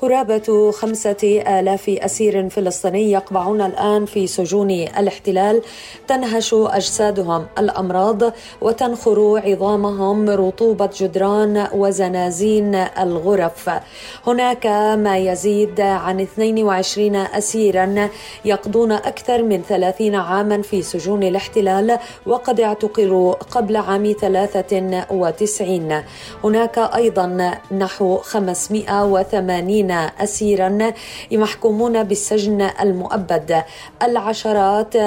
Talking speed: 80 wpm